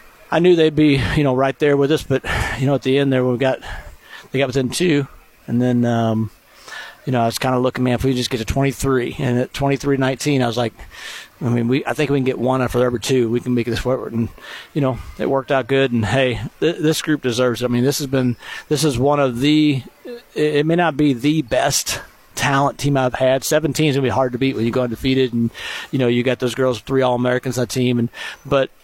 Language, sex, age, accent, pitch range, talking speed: English, male, 40-59, American, 125-140 Hz, 260 wpm